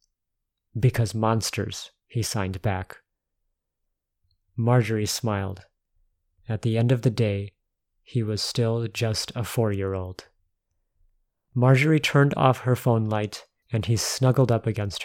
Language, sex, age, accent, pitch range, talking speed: English, male, 30-49, American, 105-130 Hz, 120 wpm